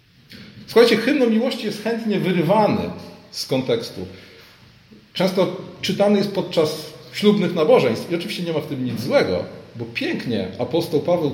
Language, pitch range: Polish, 170-230 Hz